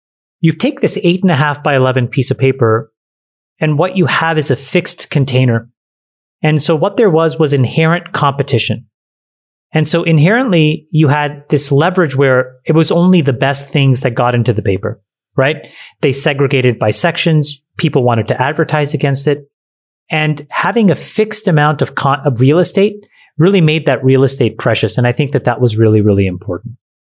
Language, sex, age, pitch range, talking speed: English, male, 30-49, 120-160 Hz, 180 wpm